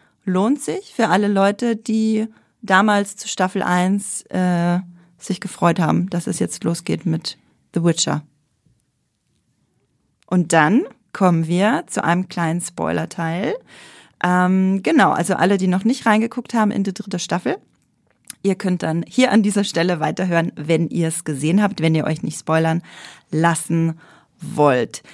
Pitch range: 165-205 Hz